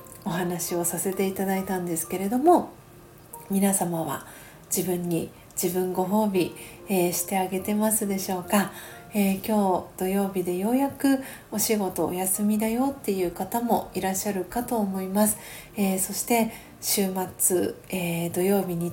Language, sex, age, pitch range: Japanese, female, 40-59, 185-215 Hz